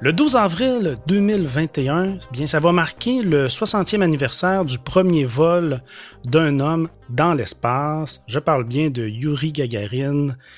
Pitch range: 125-170 Hz